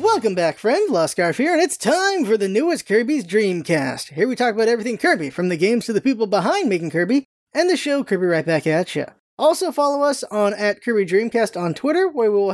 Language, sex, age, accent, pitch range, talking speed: English, male, 20-39, American, 190-290 Hz, 225 wpm